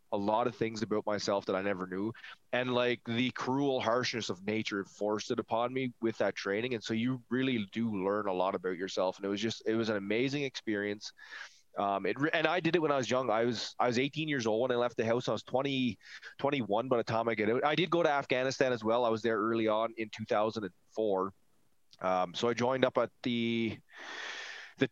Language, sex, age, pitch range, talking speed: English, male, 20-39, 105-130 Hz, 230 wpm